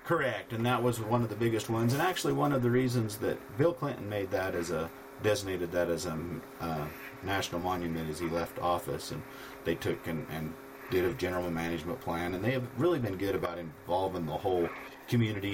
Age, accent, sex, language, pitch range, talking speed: 50-69, American, male, English, 90-125 Hz, 210 wpm